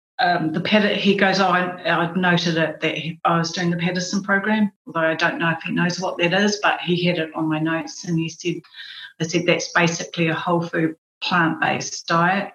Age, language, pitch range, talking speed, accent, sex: 30-49, English, 165-195 Hz, 225 wpm, Australian, female